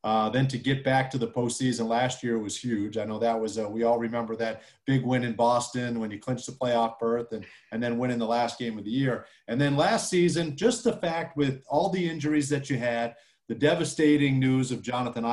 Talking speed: 235 wpm